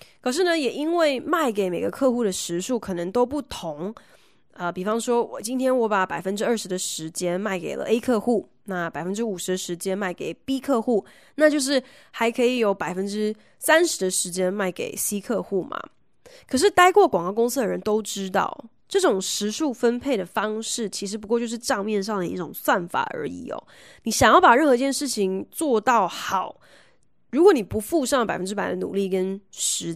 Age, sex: 20-39, female